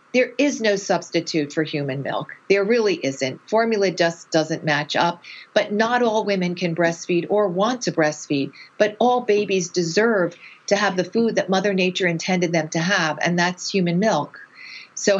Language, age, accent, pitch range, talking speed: English, 40-59, American, 110-180 Hz, 180 wpm